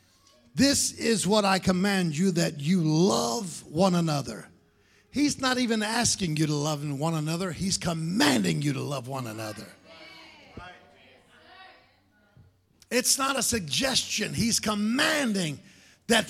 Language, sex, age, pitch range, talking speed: English, male, 50-69, 180-260 Hz, 125 wpm